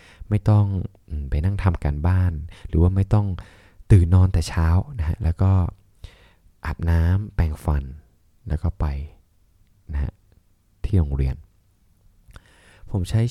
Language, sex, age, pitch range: Thai, male, 20-39, 80-100 Hz